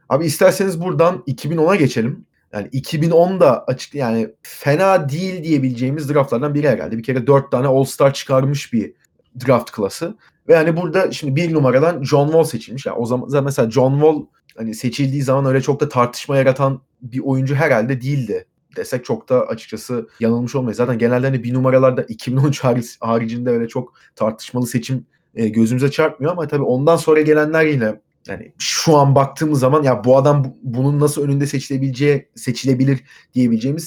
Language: Turkish